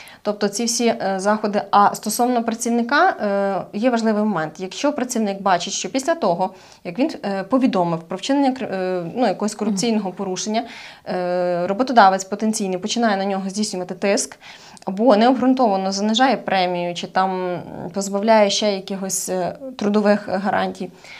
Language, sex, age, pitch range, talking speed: Ukrainian, female, 20-39, 195-240 Hz, 120 wpm